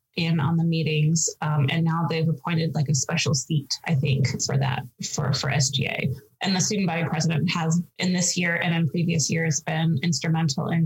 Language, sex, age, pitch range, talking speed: English, female, 20-39, 155-185 Hz, 200 wpm